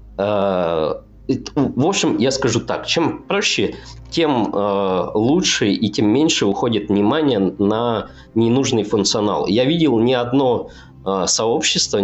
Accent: native